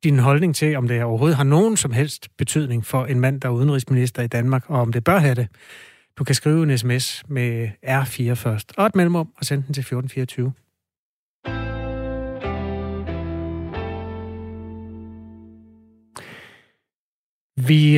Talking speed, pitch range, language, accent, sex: 135 wpm, 125-155 Hz, Danish, native, male